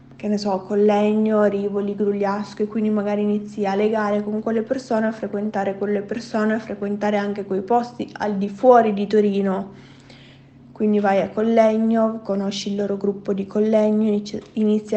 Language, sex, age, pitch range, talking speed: Italian, female, 20-39, 195-210 Hz, 160 wpm